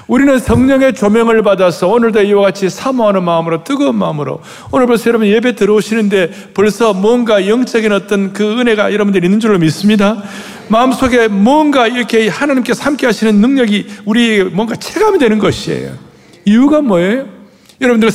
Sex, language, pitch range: male, Korean, 175-225 Hz